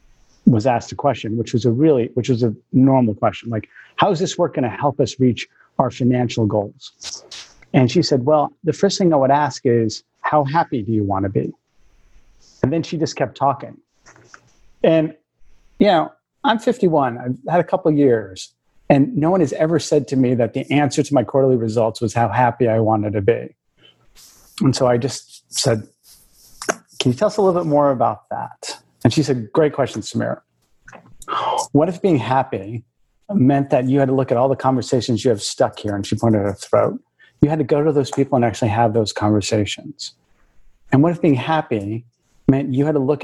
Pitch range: 115-150 Hz